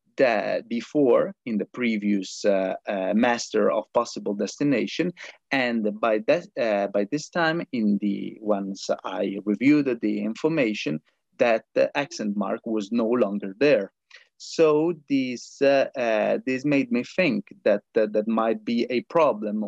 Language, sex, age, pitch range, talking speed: English, male, 30-49, 105-135 Hz, 145 wpm